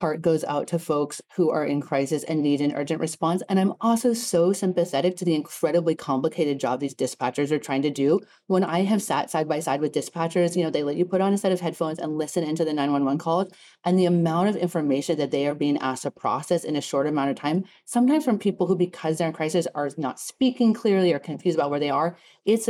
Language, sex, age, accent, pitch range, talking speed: English, female, 30-49, American, 150-180 Hz, 245 wpm